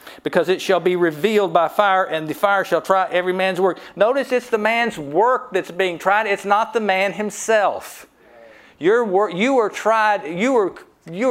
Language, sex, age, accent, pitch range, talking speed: English, male, 60-79, American, 155-200 Hz, 190 wpm